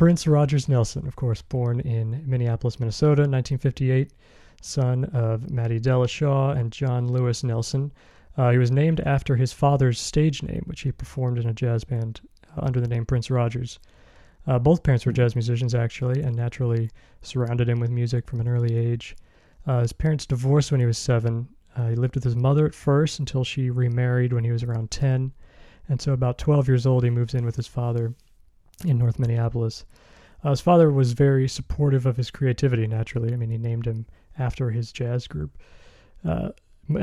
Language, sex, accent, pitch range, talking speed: English, male, American, 120-140 Hz, 190 wpm